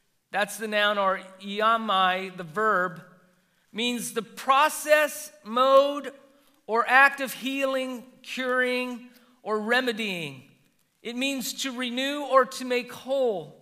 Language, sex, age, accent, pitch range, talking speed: English, male, 40-59, American, 200-260 Hz, 115 wpm